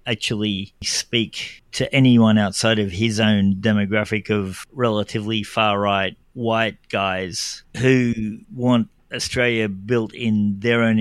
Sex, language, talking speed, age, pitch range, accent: male, English, 115 wpm, 50-69, 105-120 Hz, Australian